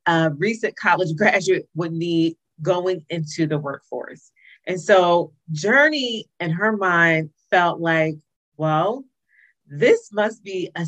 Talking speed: 125 wpm